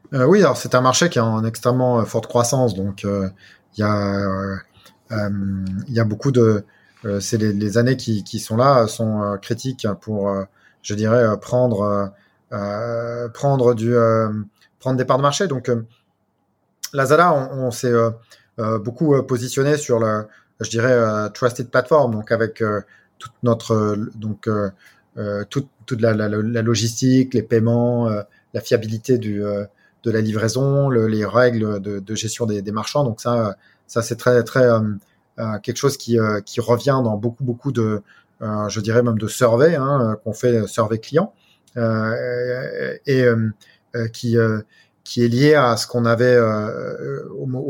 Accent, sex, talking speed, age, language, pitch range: French, male, 175 wpm, 30-49, French, 105-125 Hz